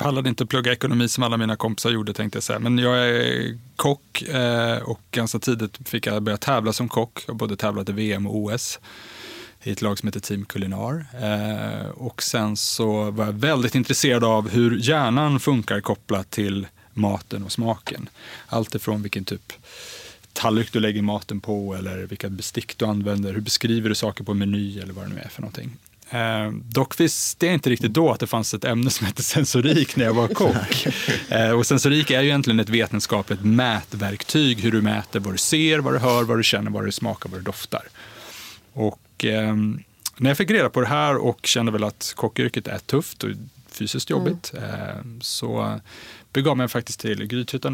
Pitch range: 105-125 Hz